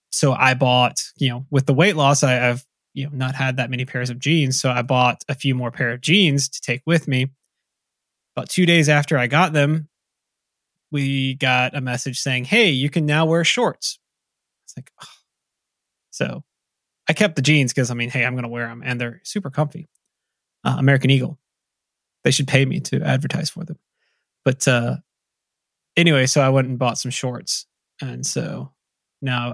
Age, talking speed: 20-39, 195 wpm